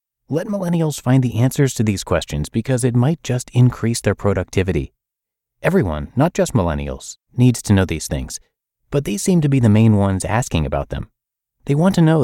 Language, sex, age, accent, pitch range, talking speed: English, male, 30-49, American, 95-125 Hz, 190 wpm